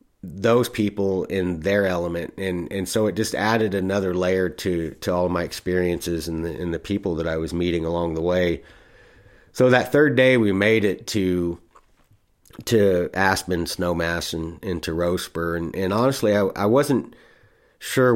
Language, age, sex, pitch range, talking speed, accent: English, 30-49, male, 85-105 Hz, 170 wpm, American